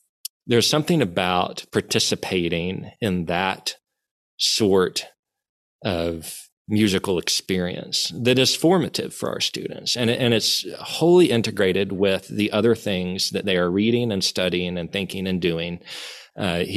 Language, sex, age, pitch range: English, male, 40-59, 90-115 Hz